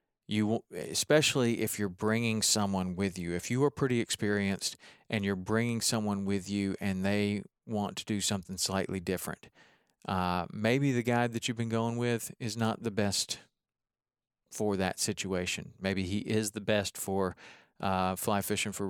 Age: 40-59